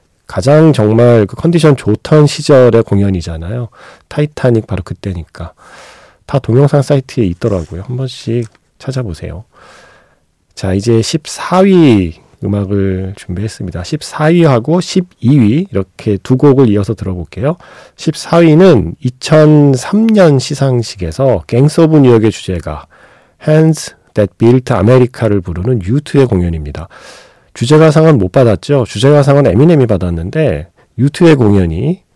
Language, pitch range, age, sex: Korean, 100-145 Hz, 40-59, male